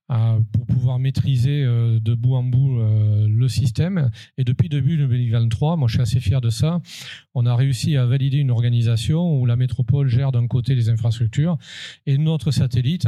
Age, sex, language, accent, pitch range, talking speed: 40-59, male, French, French, 115-135 Hz, 185 wpm